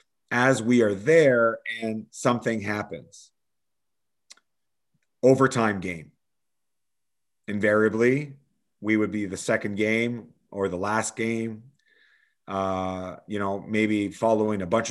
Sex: male